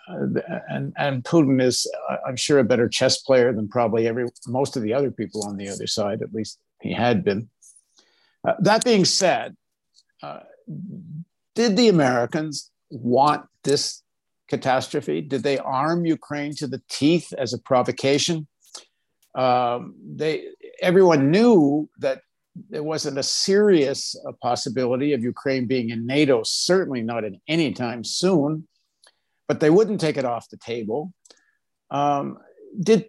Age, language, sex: 60-79, English, male